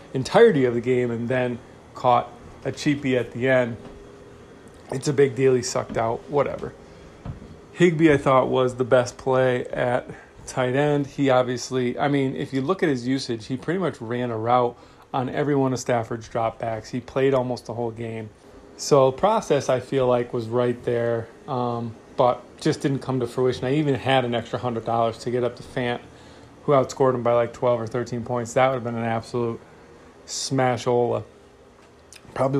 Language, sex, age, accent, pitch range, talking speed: English, male, 30-49, American, 120-135 Hz, 190 wpm